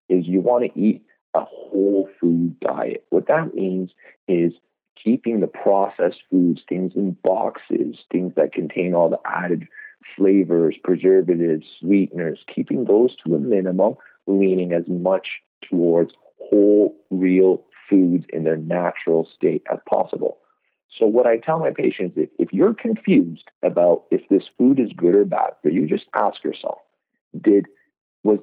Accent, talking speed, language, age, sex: American, 150 wpm, English, 50-69, male